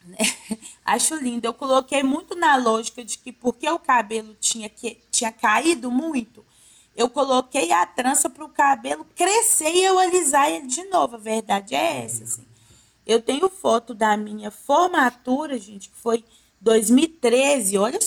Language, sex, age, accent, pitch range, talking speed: Portuguese, female, 20-39, Brazilian, 230-315 Hz, 150 wpm